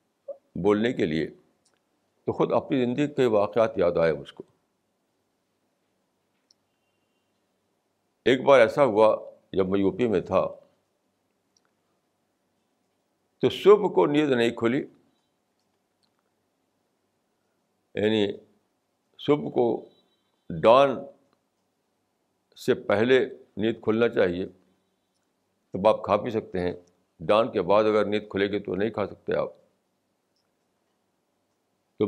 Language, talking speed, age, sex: Urdu, 105 wpm, 60-79, male